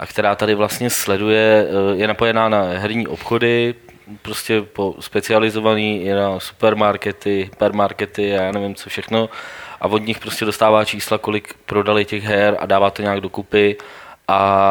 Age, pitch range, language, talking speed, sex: 20-39, 105-110 Hz, Czech, 145 wpm, male